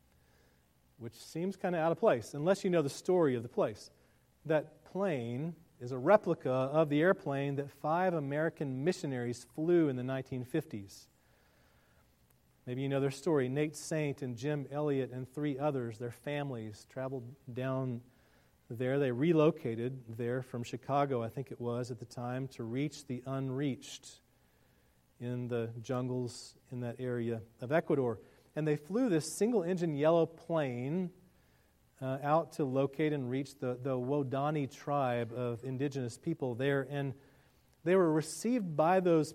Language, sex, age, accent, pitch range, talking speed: English, male, 40-59, American, 120-150 Hz, 155 wpm